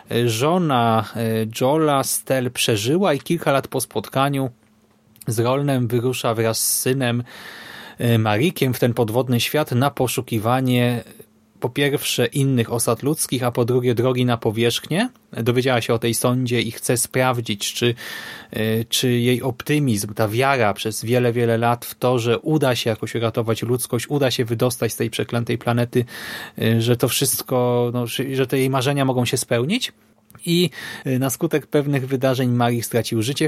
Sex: male